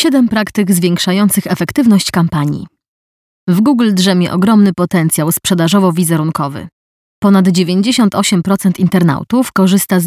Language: Polish